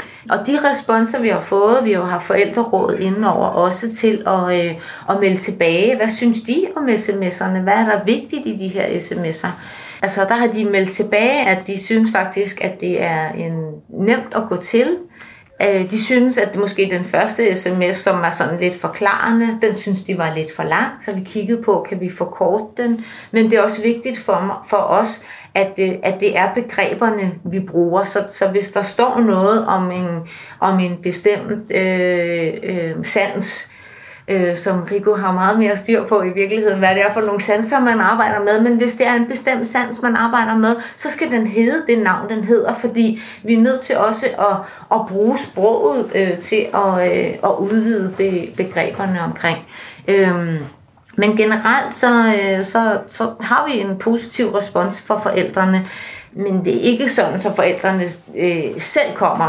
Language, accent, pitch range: Danish, native, 185-225 Hz